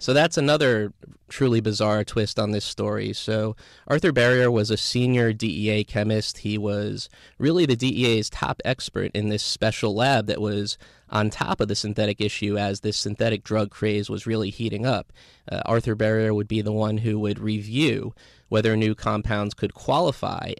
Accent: American